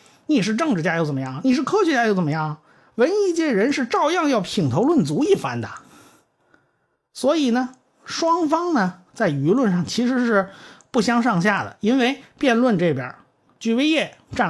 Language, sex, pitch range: Chinese, male, 140-235 Hz